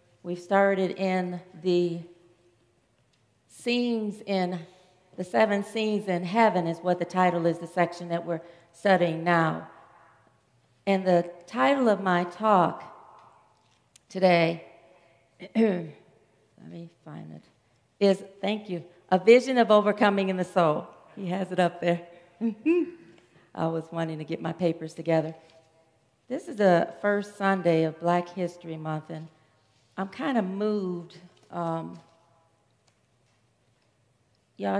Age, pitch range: 40-59, 160-190 Hz